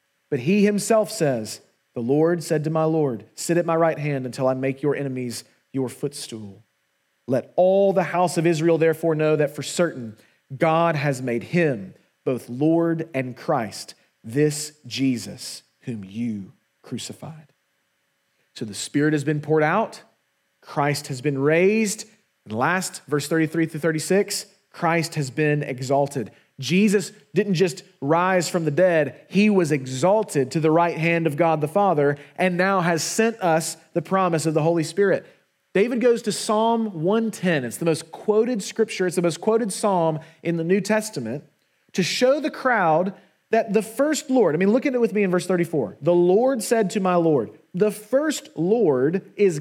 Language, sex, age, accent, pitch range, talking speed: English, male, 30-49, American, 150-200 Hz, 175 wpm